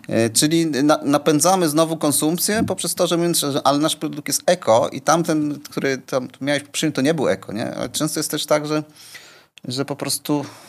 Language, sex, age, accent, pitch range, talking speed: Polish, male, 30-49, native, 110-150 Hz, 190 wpm